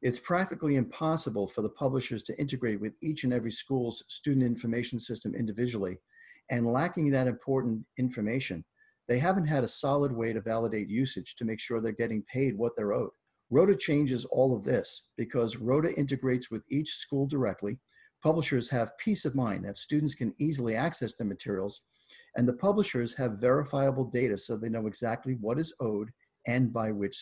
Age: 50-69